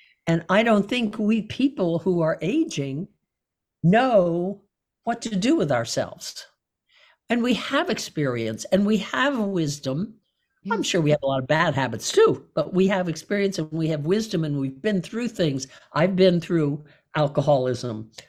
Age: 60-79